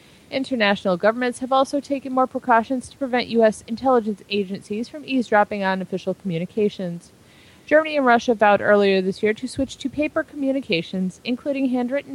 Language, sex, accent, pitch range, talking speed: English, female, American, 190-255 Hz, 155 wpm